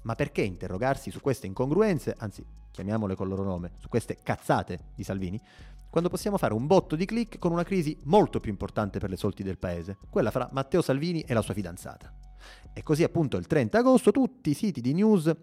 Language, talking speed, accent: Italian, 210 wpm, native